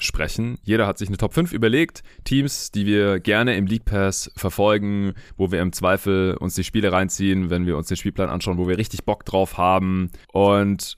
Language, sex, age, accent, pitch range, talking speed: German, male, 30-49, German, 85-105 Hz, 200 wpm